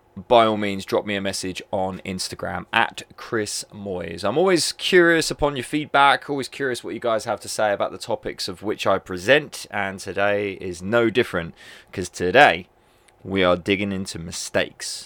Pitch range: 95-120 Hz